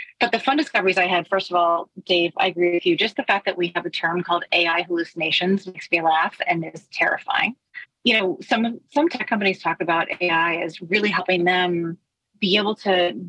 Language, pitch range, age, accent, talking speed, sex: English, 175-210 Hz, 30-49, American, 210 wpm, female